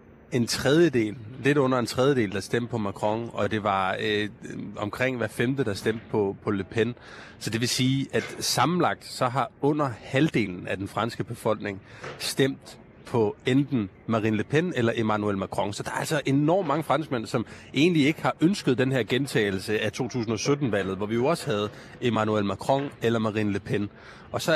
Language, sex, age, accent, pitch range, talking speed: Danish, male, 30-49, native, 110-135 Hz, 185 wpm